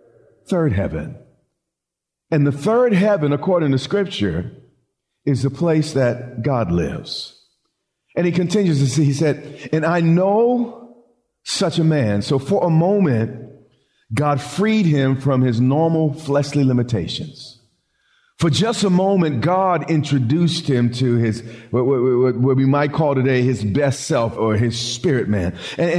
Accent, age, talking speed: American, 50-69, 145 wpm